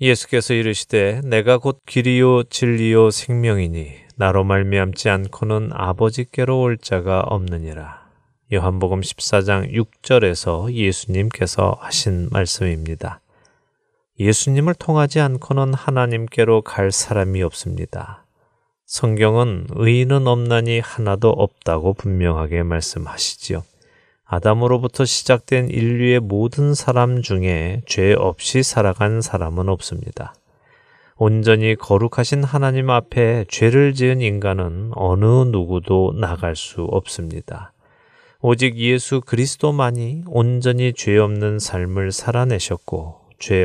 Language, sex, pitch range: Korean, male, 95-125 Hz